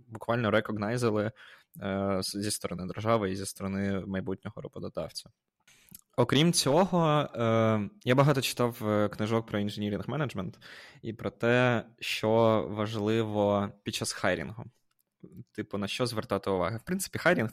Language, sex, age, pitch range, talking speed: Ukrainian, male, 20-39, 100-120 Hz, 125 wpm